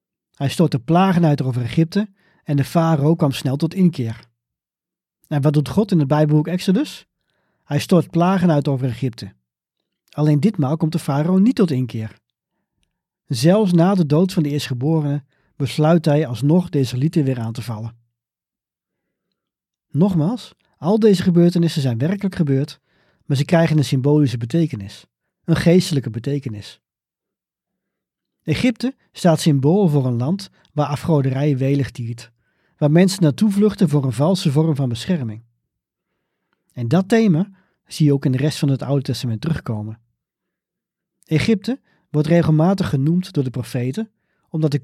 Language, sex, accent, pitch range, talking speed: Dutch, male, Dutch, 135-175 Hz, 150 wpm